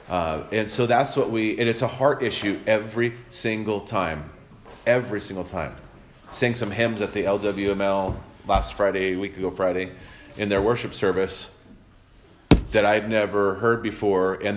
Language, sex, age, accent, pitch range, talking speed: English, male, 30-49, American, 95-125 Hz, 160 wpm